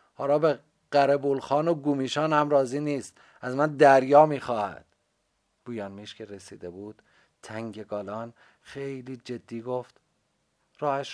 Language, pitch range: Persian, 110-150 Hz